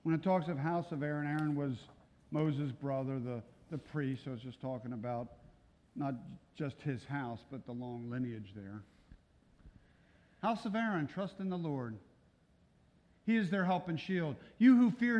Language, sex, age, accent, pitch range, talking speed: English, male, 50-69, American, 130-180 Hz, 175 wpm